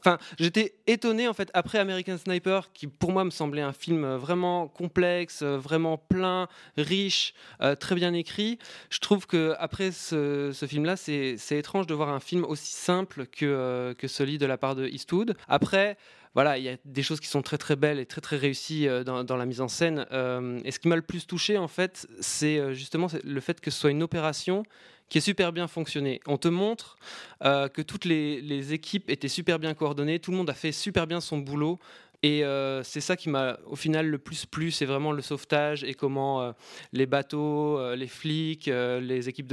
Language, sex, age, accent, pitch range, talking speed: French, male, 20-39, French, 135-175 Hz, 215 wpm